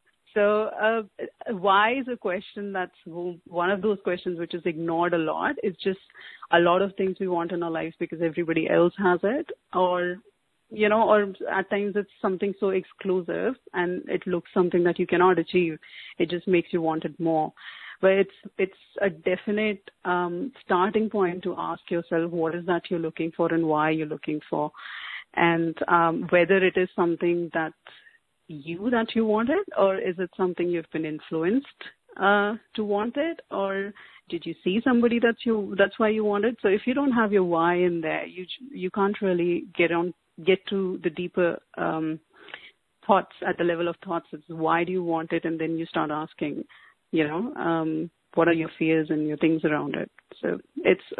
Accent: Indian